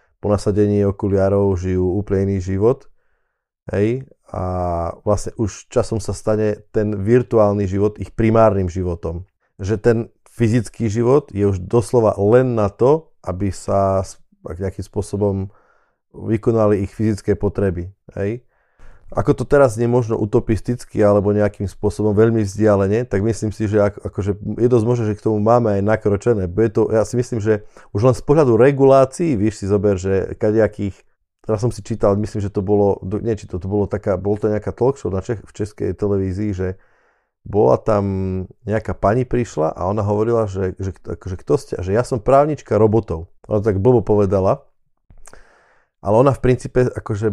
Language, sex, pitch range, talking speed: Slovak, male, 100-115 Hz, 165 wpm